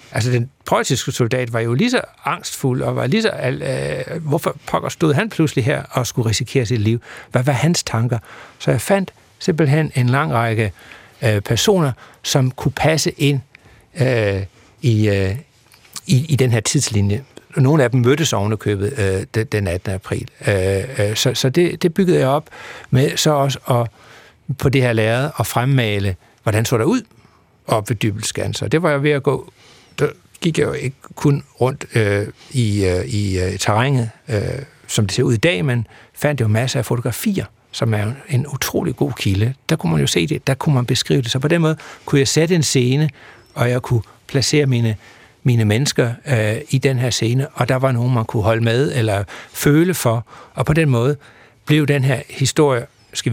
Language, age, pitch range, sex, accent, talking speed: Danish, 60-79, 110-145 Hz, male, native, 200 wpm